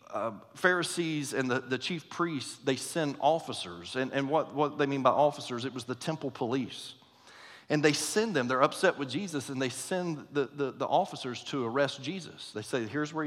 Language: English